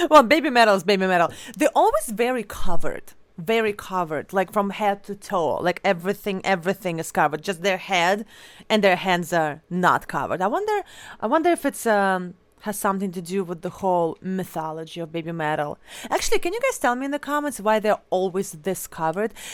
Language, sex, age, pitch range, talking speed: English, female, 30-49, 180-220 Hz, 195 wpm